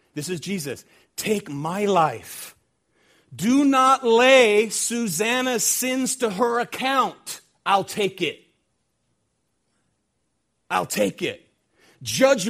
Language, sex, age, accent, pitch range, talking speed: English, male, 40-59, American, 140-225 Hz, 100 wpm